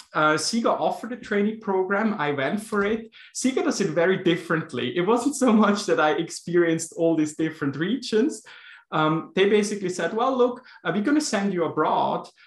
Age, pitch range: 20-39, 155-200 Hz